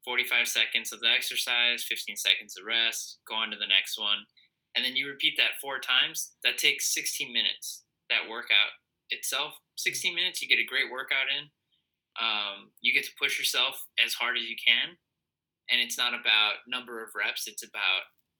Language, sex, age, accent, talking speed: English, male, 20-39, American, 185 wpm